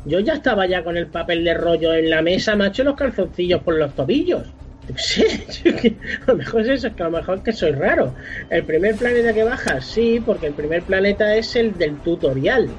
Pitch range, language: 155-200 Hz, Spanish